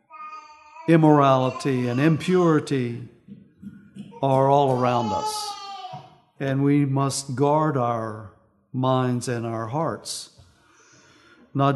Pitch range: 130-175 Hz